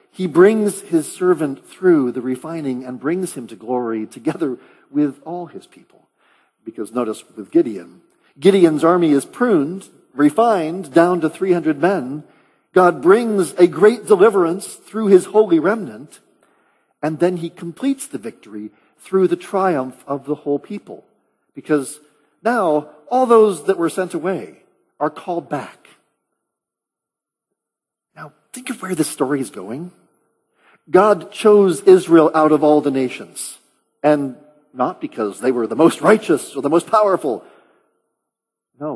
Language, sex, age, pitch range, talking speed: English, male, 50-69, 140-190 Hz, 140 wpm